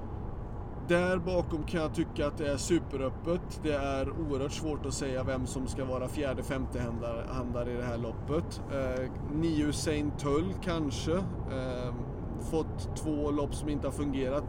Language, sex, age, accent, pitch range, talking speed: Swedish, male, 30-49, native, 115-150 Hz, 160 wpm